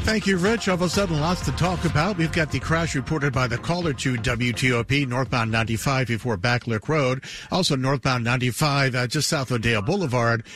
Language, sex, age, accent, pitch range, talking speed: English, male, 50-69, American, 115-140 Hz, 200 wpm